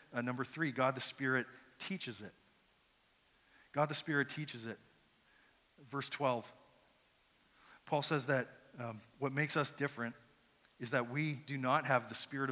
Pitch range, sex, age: 125-155 Hz, male, 40-59